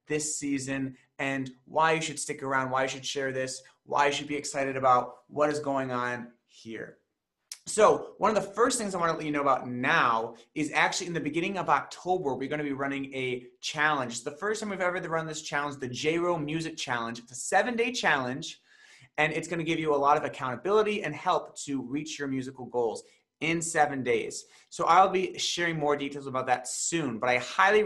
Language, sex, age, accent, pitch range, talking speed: English, male, 30-49, American, 130-165 Hz, 215 wpm